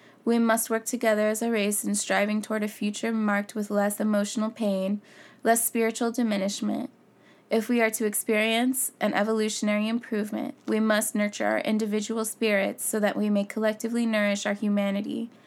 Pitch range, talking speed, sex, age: 205-230 Hz, 165 wpm, female, 20-39